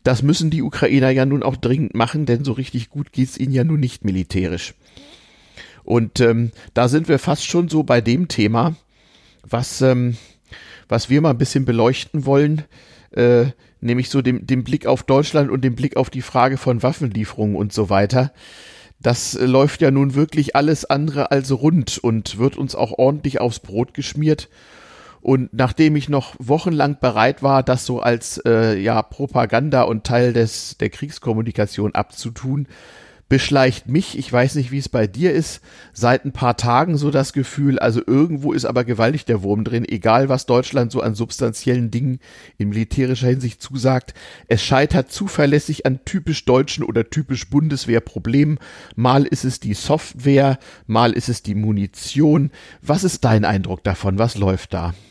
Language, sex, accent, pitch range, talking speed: German, male, German, 115-140 Hz, 170 wpm